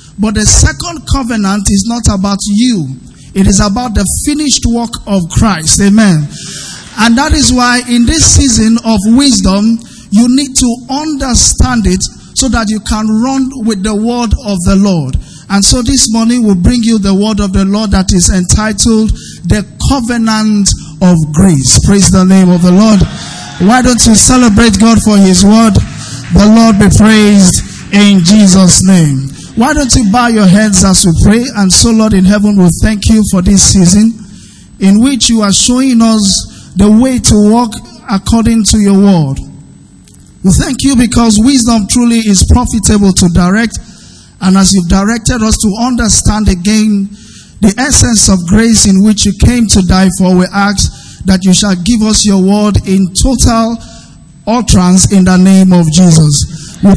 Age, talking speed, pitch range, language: 50-69, 170 wpm, 190-230 Hz, English